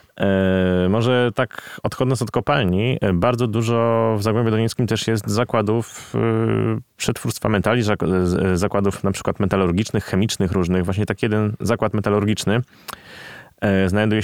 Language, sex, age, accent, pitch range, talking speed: Polish, male, 20-39, native, 90-110 Hz, 115 wpm